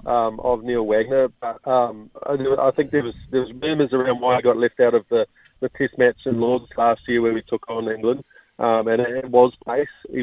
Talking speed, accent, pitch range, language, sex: 225 wpm, Australian, 115-140 Hz, English, male